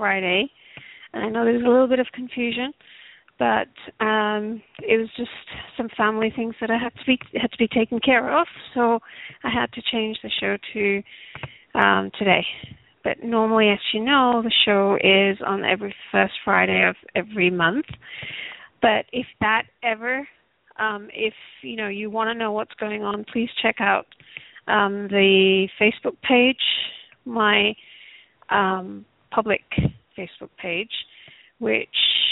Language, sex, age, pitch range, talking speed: English, female, 40-59, 200-240 Hz, 150 wpm